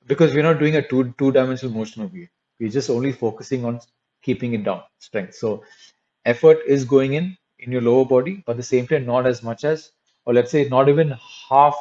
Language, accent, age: English, Indian, 30-49